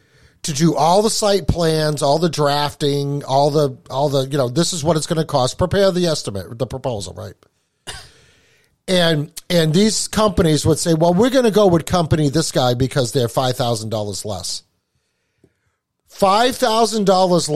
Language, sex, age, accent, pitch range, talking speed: English, male, 50-69, American, 135-175 Hz, 165 wpm